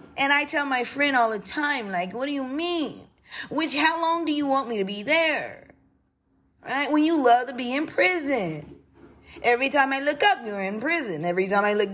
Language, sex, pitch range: English, female, 215-310 Hz